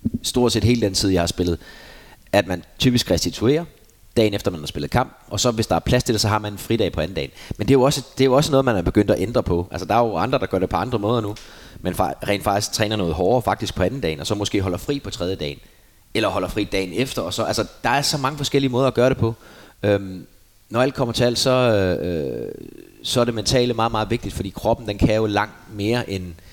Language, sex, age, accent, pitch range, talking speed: Danish, male, 30-49, native, 90-115 Hz, 270 wpm